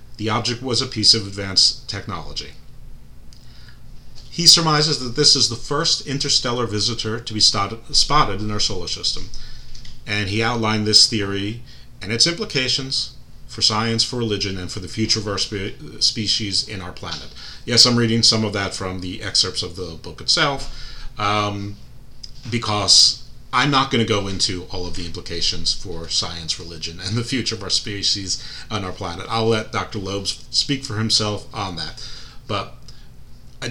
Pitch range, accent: 100-125 Hz, American